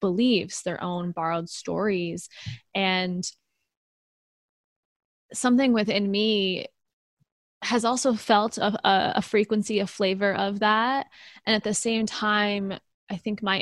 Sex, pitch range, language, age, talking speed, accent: female, 190-245 Hz, English, 20-39, 120 wpm, American